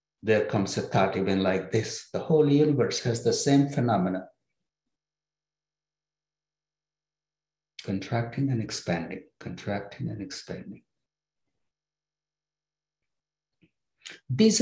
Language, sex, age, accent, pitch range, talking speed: English, male, 60-79, Indian, 125-155 Hz, 85 wpm